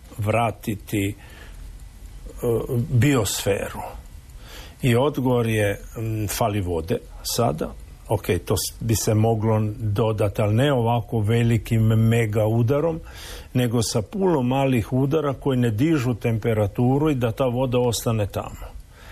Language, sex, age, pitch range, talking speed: Croatian, male, 50-69, 105-125 Hz, 110 wpm